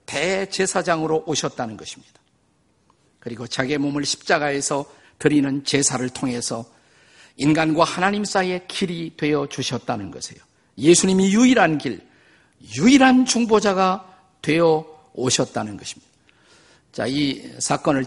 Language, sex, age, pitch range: Korean, male, 50-69, 130-180 Hz